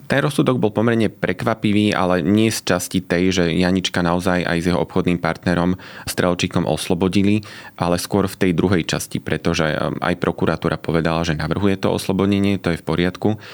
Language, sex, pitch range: Slovak, male, 85-95 Hz